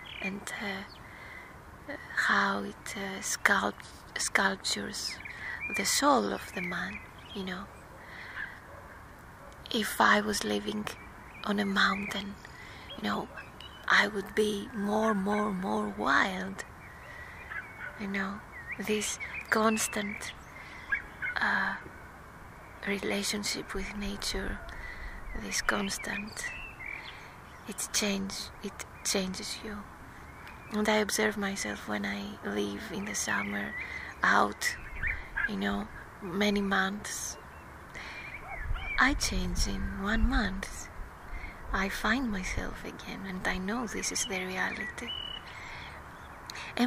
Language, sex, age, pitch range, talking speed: English, female, 20-39, 180-215 Hz, 100 wpm